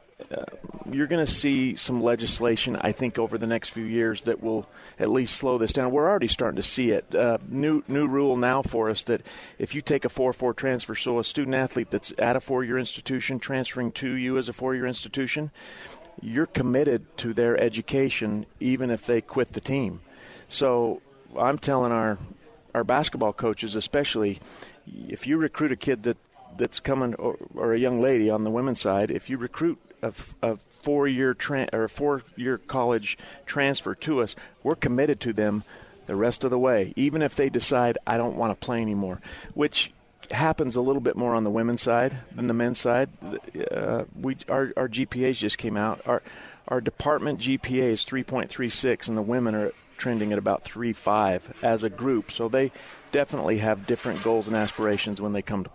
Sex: male